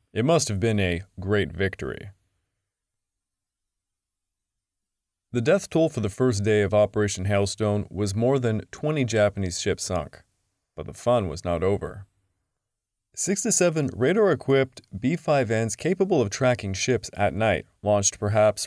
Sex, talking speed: male, 140 wpm